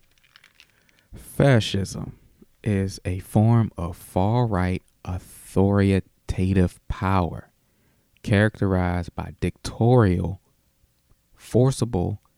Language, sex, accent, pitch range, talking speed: English, male, American, 95-110 Hz, 65 wpm